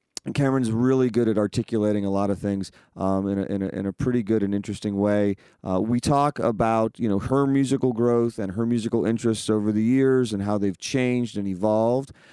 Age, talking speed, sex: 30-49, 215 wpm, male